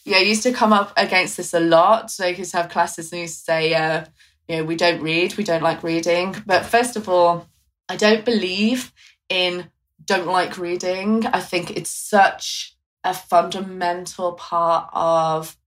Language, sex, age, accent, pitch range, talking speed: English, female, 20-39, British, 165-190 Hz, 190 wpm